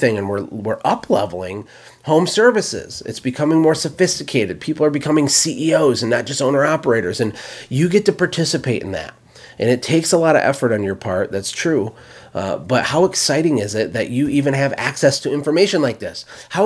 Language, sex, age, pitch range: English, male, 30-49, 115-160 Hz